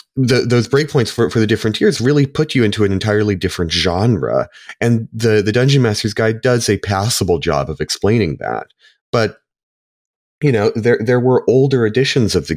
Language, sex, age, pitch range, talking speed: English, male, 30-49, 85-110 Hz, 185 wpm